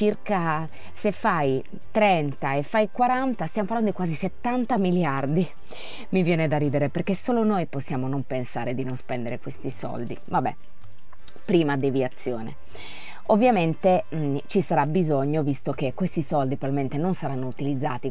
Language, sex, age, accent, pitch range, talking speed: Italian, female, 20-39, native, 140-185 Hz, 145 wpm